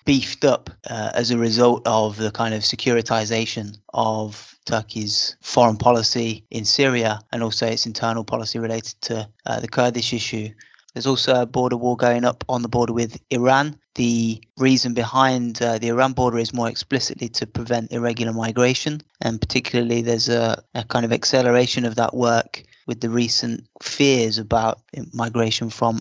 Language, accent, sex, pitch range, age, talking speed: English, British, male, 115-130 Hz, 20-39, 165 wpm